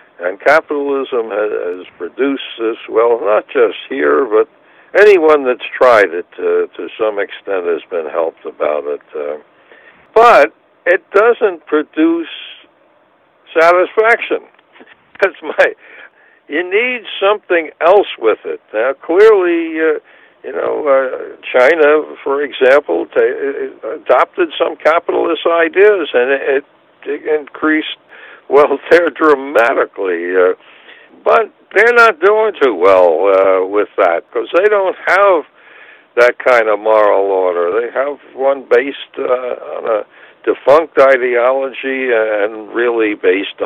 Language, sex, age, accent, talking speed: English, male, 60-79, American, 120 wpm